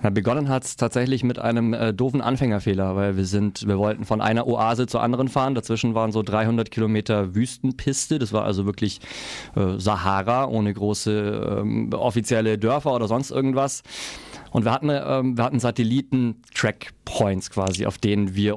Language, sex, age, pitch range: German, male, 30-49, 105-125 Hz